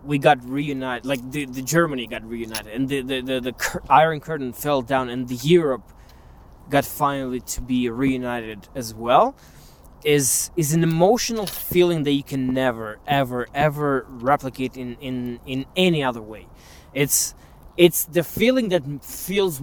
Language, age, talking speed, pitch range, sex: Romanian, 20-39, 160 wpm, 120-150 Hz, male